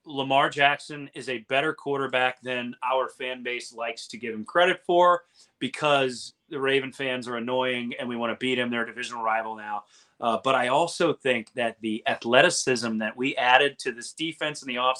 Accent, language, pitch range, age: American, English, 120-150 Hz, 30-49